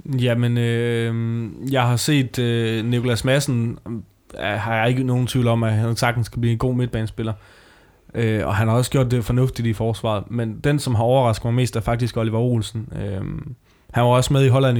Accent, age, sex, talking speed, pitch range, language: native, 20-39, male, 205 wpm, 115-130 Hz, Danish